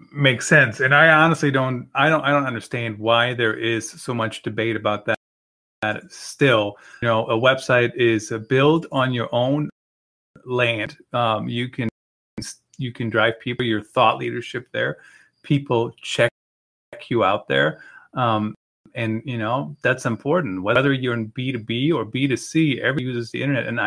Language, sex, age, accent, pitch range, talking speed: English, male, 30-49, American, 115-150 Hz, 170 wpm